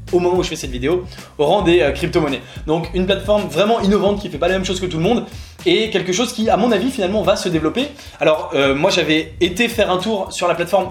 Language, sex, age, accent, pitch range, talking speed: English, male, 20-39, French, 150-190 Hz, 270 wpm